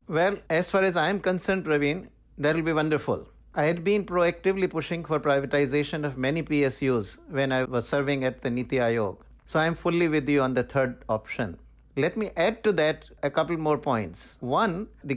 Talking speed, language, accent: 195 wpm, English, Indian